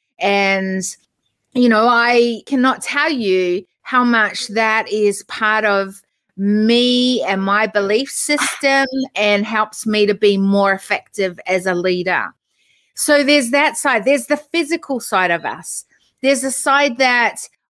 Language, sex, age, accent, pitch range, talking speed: English, female, 30-49, Australian, 200-260 Hz, 140 wpm